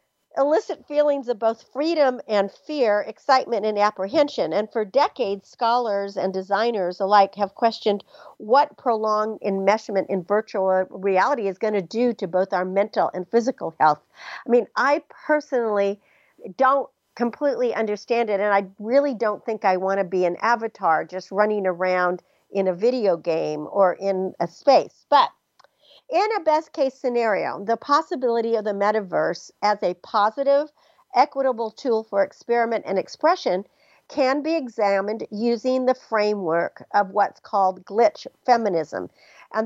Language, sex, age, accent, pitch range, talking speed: English, female, 50-69, American, 200-255 Hz, 145 wpm